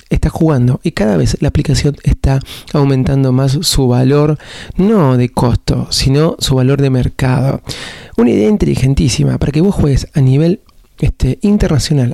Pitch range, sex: 130-165 Hz, male